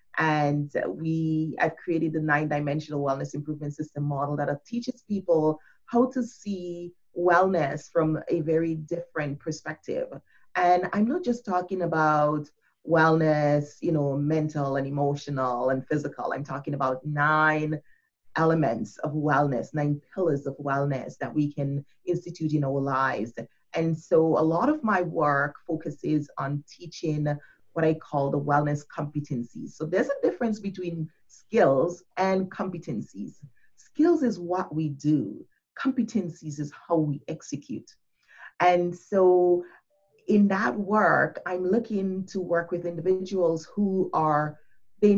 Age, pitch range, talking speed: 30-49, 145-180 Hz, 135 wpm